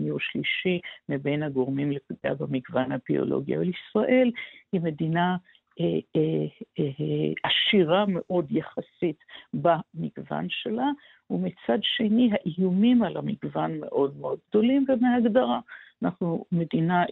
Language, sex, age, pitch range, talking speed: Hebrew, female, 60-79, 160-210 Hz, 110 wpm